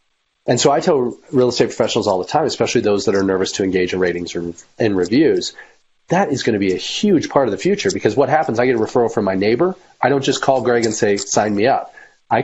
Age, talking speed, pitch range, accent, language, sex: 40-59, 255 wpm, 100-130 Hz, American, English, male